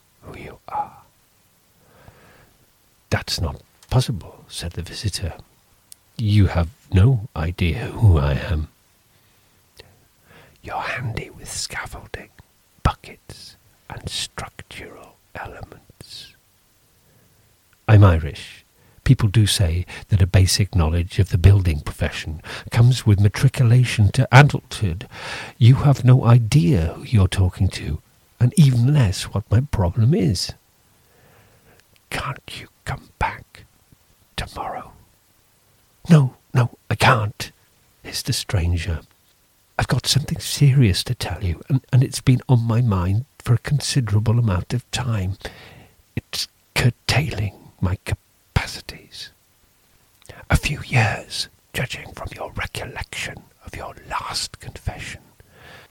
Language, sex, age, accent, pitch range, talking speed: English, male, 50-69, British, 95-125 Hz, 110 wpm